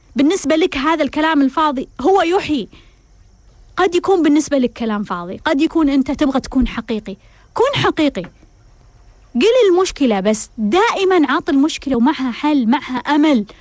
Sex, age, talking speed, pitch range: female, 20-39, 135 wpm, 220-305 Hz